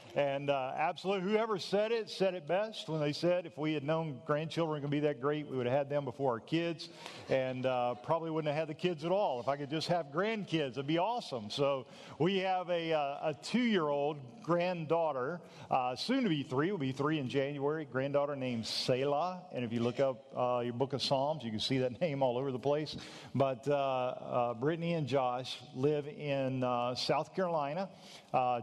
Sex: male